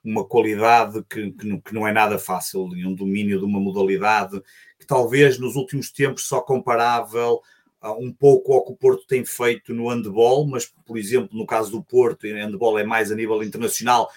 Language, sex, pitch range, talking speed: Portuguese, male, 100-125 Hz, 180 wpm